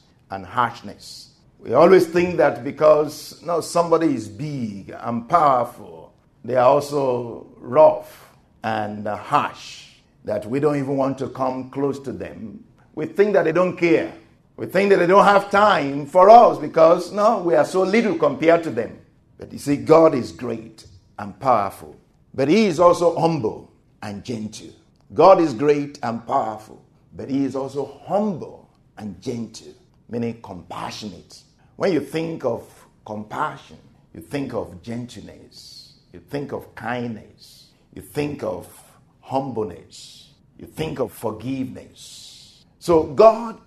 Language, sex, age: English, male, 50-69